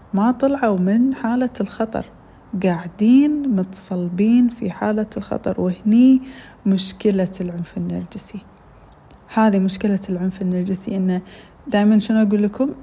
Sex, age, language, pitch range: female, 20-39, Arabic, 185-225 Hz